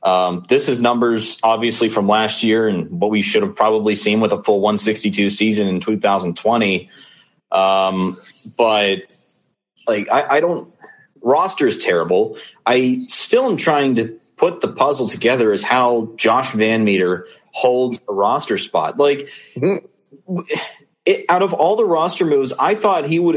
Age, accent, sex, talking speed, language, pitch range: 30-49, American, male, 155 wpm, English, 105-140 Hz